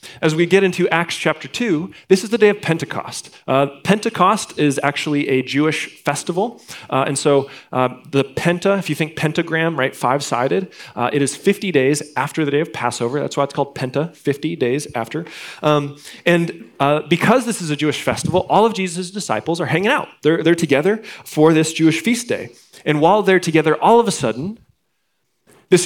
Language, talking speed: English, 190 wpm